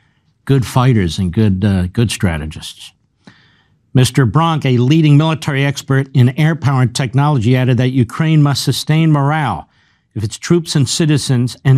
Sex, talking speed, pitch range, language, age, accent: male, 155 wpm, 135-160 Hz, English, 50-69, American